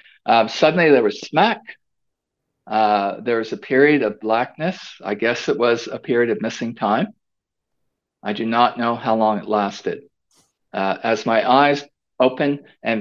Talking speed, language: 160 wpm, English